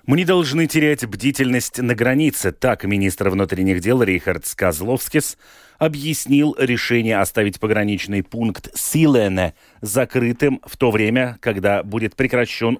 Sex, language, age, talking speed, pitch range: male, Russian, 30-49, 120 wpm, 85-125 Hz